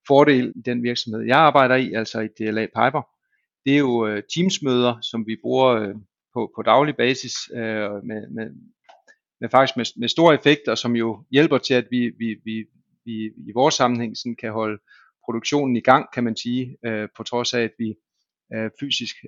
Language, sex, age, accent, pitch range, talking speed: Danish, male, 40-59, native, 110-130 Hz, 175 wpm